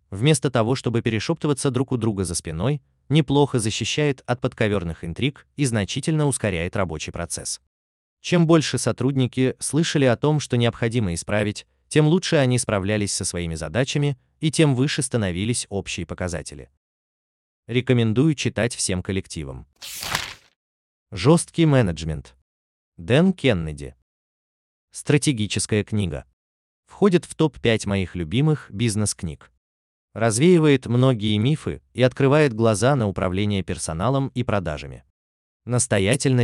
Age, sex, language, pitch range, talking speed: 20-39, male, Russian, 85-135 Hz, 115 wpm